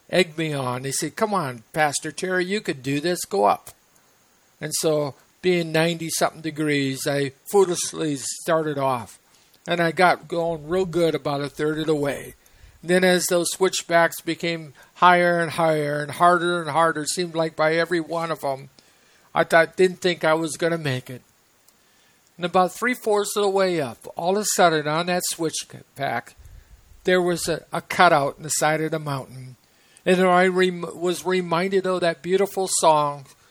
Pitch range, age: 145-180 Hz, 50-69